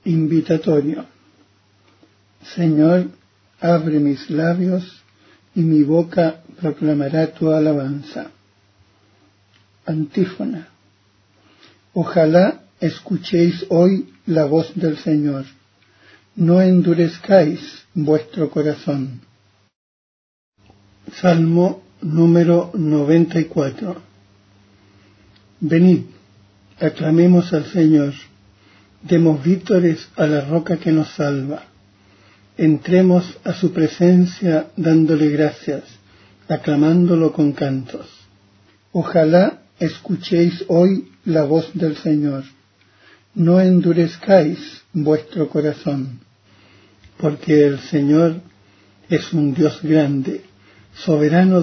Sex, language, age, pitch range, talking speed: male, Spanish, 60-79, 105-170 Hz, 75 wpm